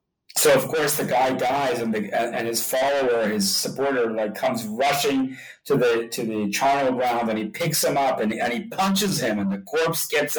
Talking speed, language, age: 210 wpm, English, 40-59